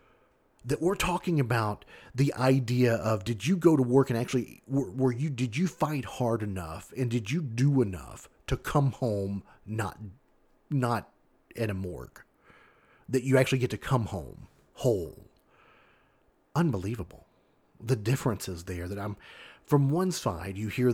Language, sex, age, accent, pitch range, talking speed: English, male, 40-59, American, 105-140 Hz, 155 wpm